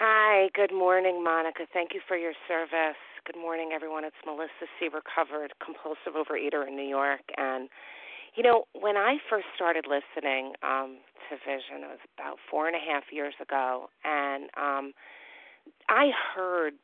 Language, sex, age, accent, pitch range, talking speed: English, female, 40-59, American, 145-190 Hz, 160 wpm